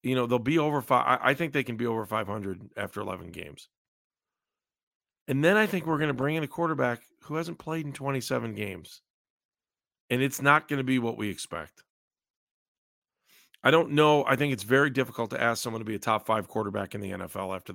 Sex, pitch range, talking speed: male, 110-150 Hz, 215 wpm